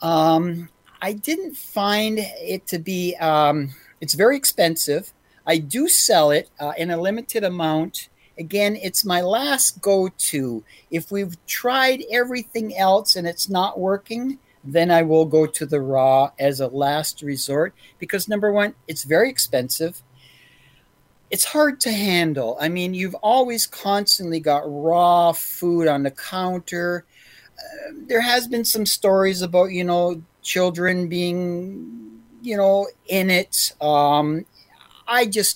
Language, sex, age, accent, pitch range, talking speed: English, male, 50-69, American, 150-200 Hz, 140 wpm